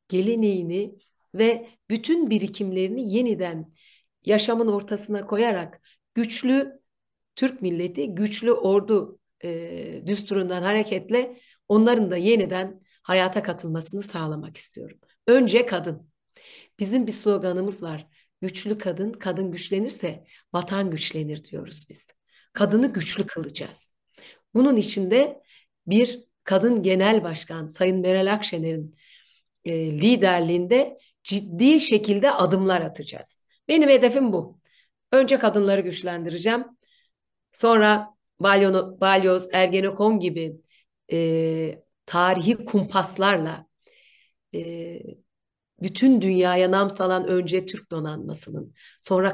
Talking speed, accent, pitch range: 95 wpm, native, 175-215 Hz